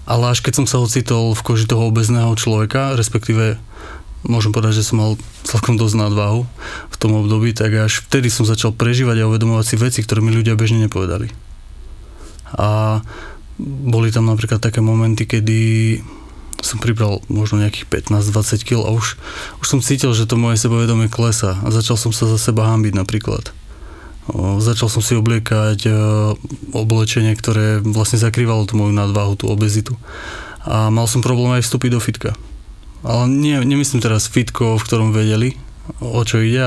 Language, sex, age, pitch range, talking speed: Slovak, male, 20-39, 110-115 Hz, 165 wpm